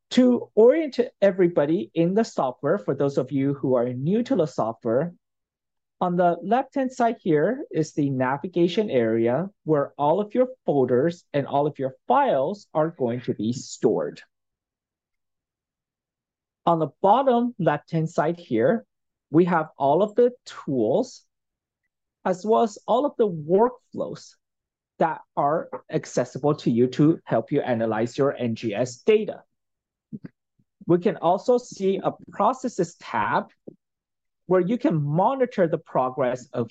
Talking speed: 140 wpm